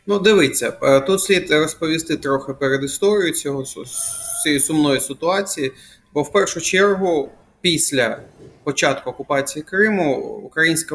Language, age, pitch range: Ukrainian, 30-49, 140-175 Hz